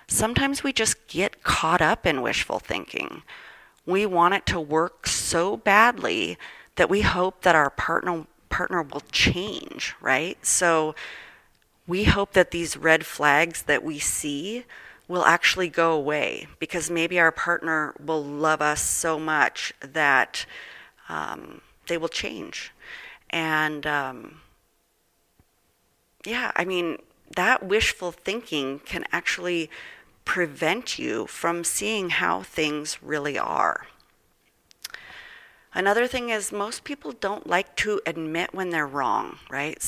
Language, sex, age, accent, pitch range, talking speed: English, female, 30-49, American, 155-195 Hz, 130 wpm